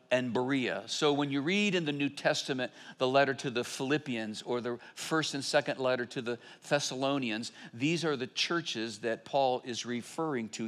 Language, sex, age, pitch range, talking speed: English, male, 50-69, 120-160 Hz, 185 wpm